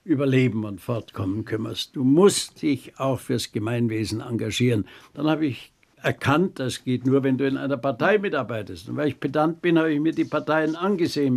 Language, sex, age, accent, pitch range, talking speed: German, male, 60-79, German, 115-140 Hz, 185 wpm